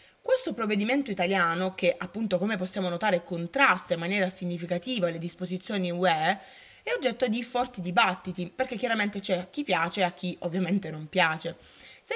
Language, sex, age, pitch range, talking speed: Italian, female, 20-39, 175-230 Hz, 165 wpm